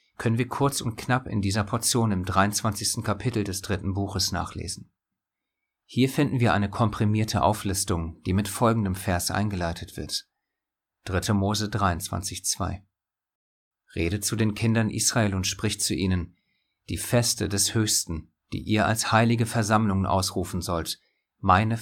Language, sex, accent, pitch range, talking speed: German, male, German, 95-115 Hz, 145 wpm